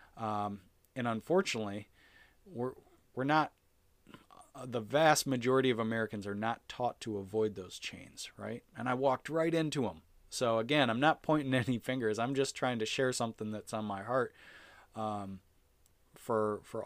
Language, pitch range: English, 105-130 Hz